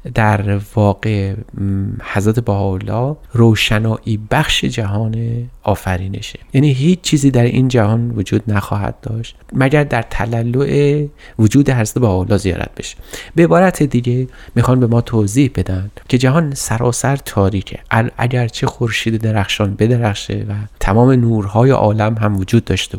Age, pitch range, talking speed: 30-49, 105-130 Hz, 125 wpm